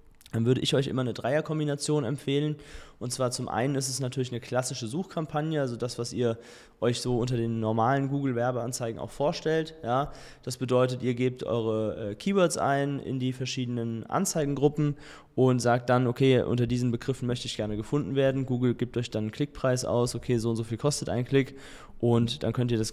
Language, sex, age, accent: German, male, 20-39, German